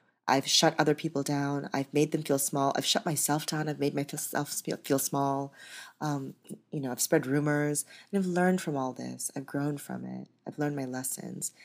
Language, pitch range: English, 140-170 Hz